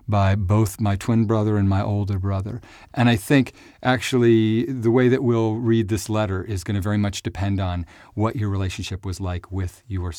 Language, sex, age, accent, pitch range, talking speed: English, male, 40-59, American, 100-120 Hz, 195 wpm